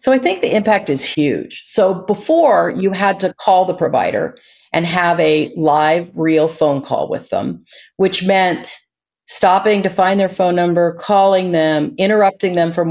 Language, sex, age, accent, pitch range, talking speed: English, female, 50-69, American, 155-205 Hz, 170 wpm